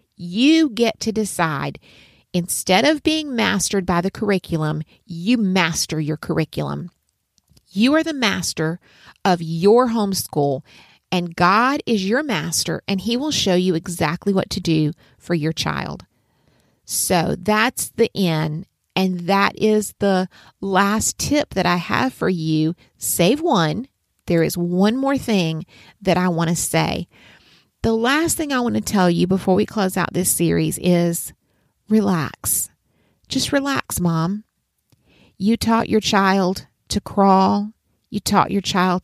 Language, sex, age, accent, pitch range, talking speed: English, female, 40-59, American, 175-225 Hz, 145 wpm